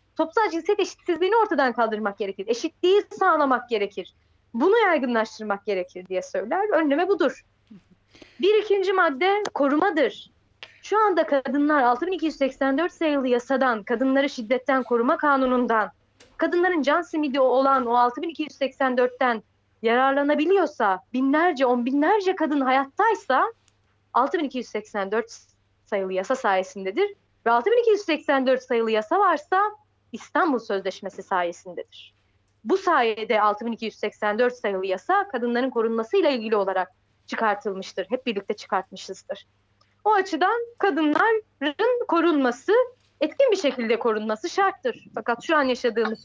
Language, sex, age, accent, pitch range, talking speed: German, female, 30-49, Turkish, 215-340 Hz, 105 wpm